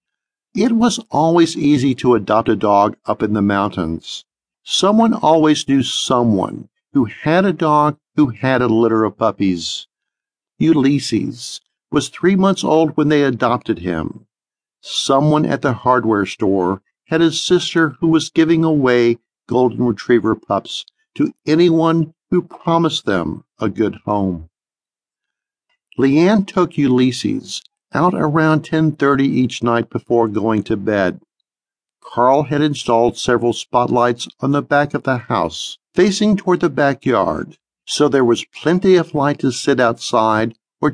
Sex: male